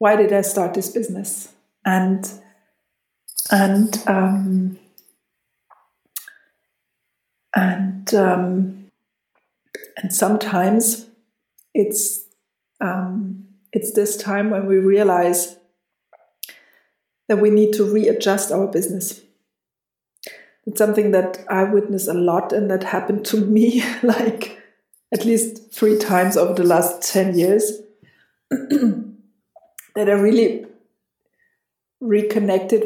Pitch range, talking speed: 190-215 Hz, 100 wpm